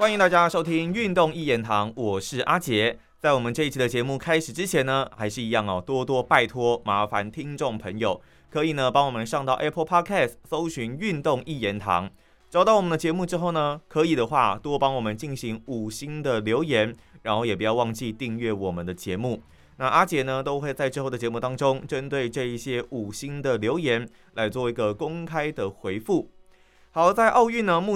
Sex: male